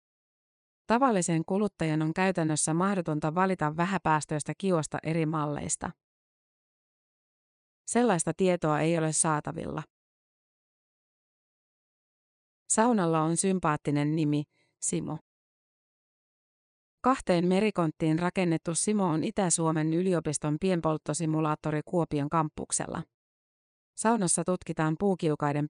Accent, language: native, Finnish